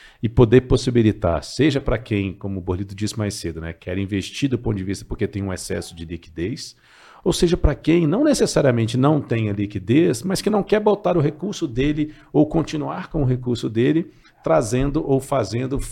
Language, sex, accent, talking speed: Portuguese, male, Brazilian, 195 wpm